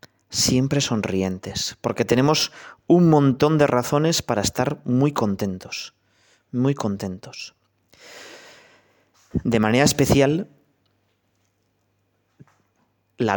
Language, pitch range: Spanish, 100-125 Hz